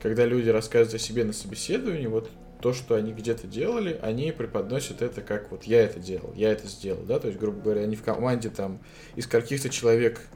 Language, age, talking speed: Russian, 20-39, 210 wpm